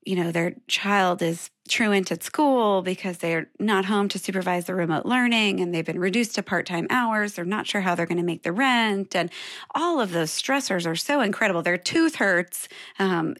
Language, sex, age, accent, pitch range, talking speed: English, female, 30-49, American, 175-260 Hz, 205 wpm